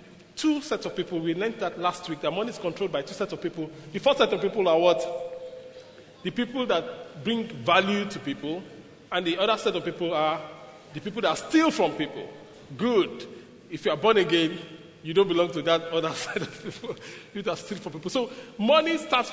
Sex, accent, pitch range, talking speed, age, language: male, Nigerian, 170-255 Hz, 210 wpm, 40-59, English